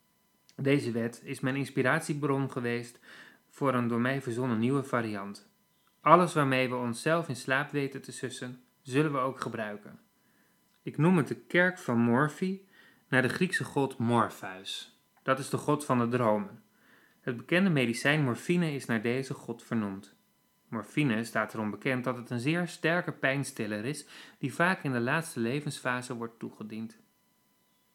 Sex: male